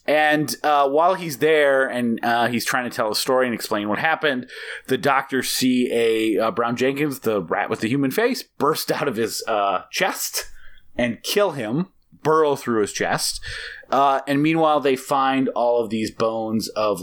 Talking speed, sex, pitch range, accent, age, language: 185 wpm, male, 105-140 Hz, American, 30-49, English